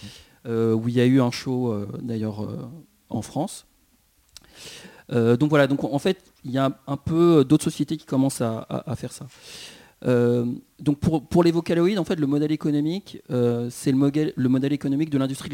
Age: 40-59